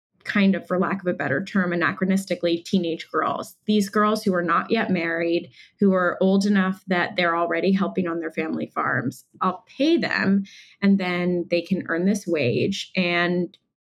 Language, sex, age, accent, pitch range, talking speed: English, female, 20-39, American, 175-205 Hz, 180 wpm